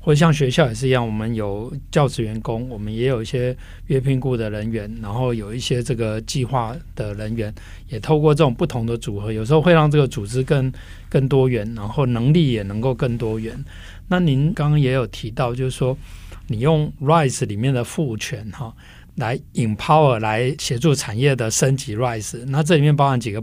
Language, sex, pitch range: Chinese, male, 115-145 Hz